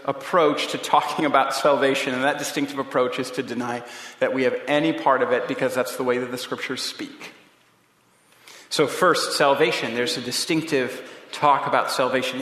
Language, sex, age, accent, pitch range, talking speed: English, male, 40-59, American, 140-180 Hz, 175 wpm